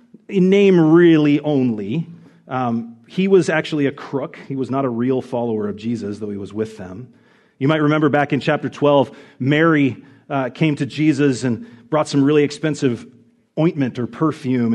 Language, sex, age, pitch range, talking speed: English, male, 40-59, 120-175 Hz, 175 wpm